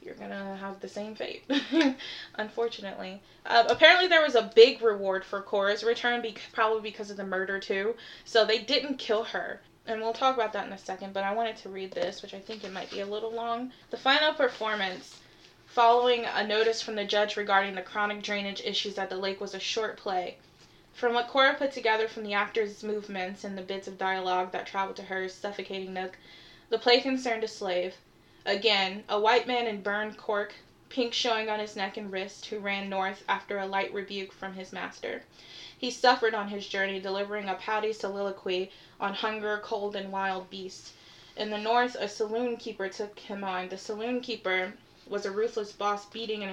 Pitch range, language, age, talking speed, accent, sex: 195-225 Hz, English, 20-39, 200 wpm, American, female